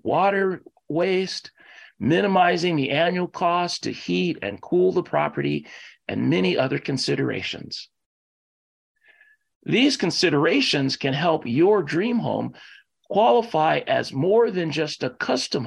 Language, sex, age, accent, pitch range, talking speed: English, male, 40-59, American, 155-230 Hz, 115 wpm